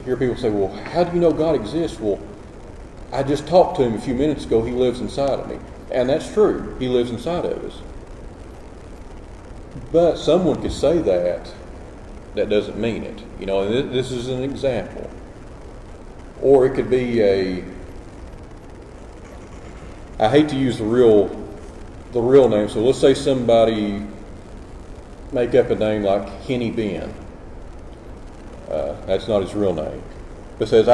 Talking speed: 160 wpm